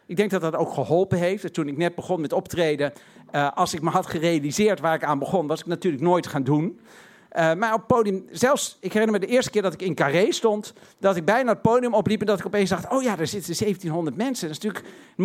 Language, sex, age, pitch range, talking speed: Dutch, male, 50-69, 170-225 Hz, 265 wpm